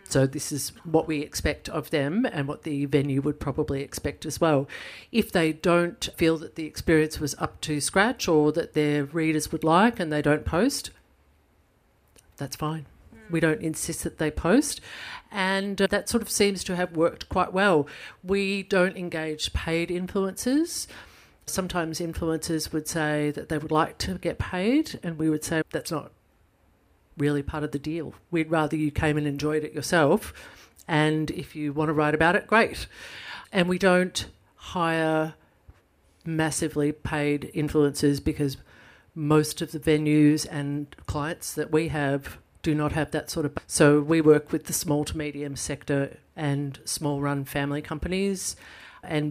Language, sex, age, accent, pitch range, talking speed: English, female, 50-69, Australian, 145-165 Hz, 170 wpm